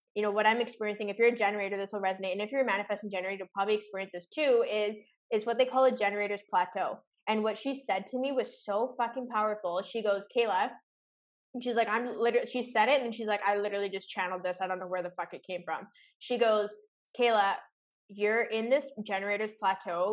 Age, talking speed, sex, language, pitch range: 20-39, 225 wpm, female, English, 190-220 Hz